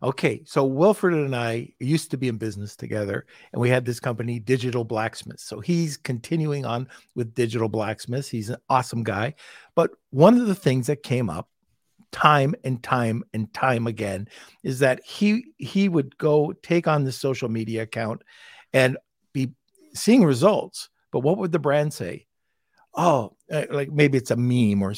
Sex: male